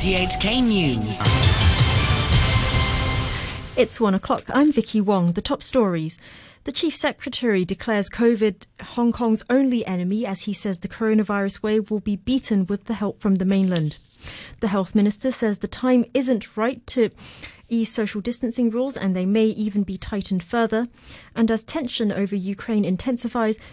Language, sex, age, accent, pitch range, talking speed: English, female, 30-49, British, 185-235 Hz, 150 wpm